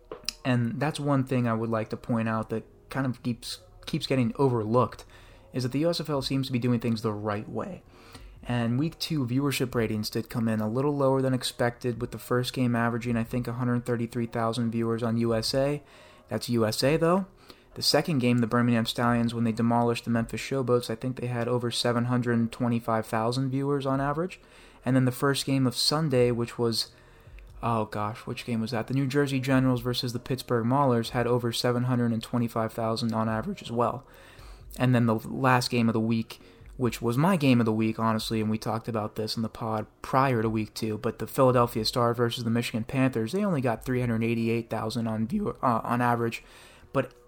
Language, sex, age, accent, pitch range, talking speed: English, male, 20-39, American, 115-130 Hz, 190 wpm